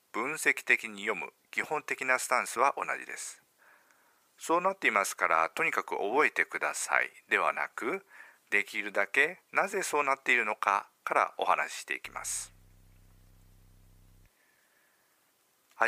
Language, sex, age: Japanese, male, 50-69